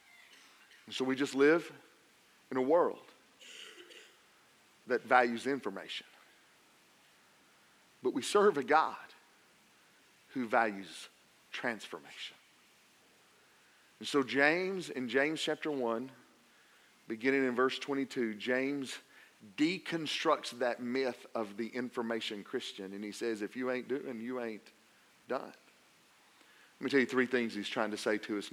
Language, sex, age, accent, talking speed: English, male, 40-59, American, 125 wpm